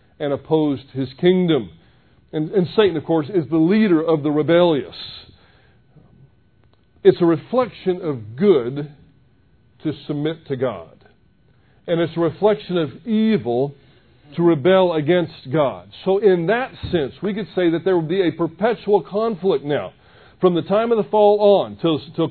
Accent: American